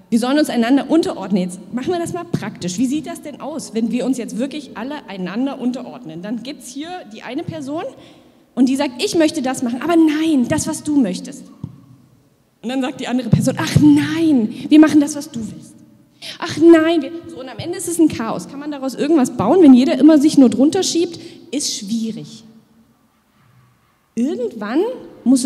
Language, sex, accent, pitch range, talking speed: German, female, German, 205-290 Hz, 195 wpm